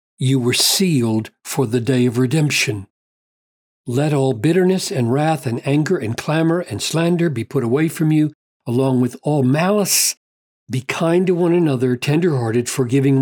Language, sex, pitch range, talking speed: English, male, 120-165 Hz, 160 wpm